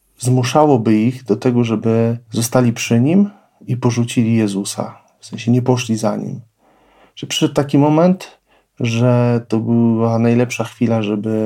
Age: 40-59